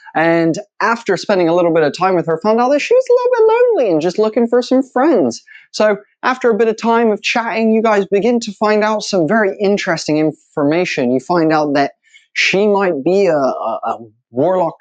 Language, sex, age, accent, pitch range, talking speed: English, male, 20-39, American, 165-230 Hz, 225 wpm